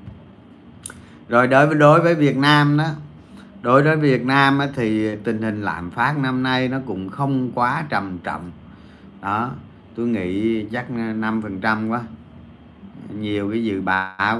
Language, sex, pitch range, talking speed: Vietnamese, male, 105-135 Hz, 145 wpm